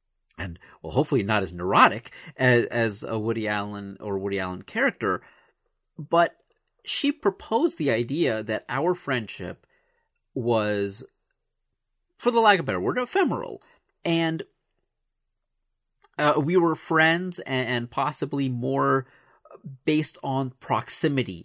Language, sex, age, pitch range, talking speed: English, male, 40-59, 110-155 Hz, 125 wpm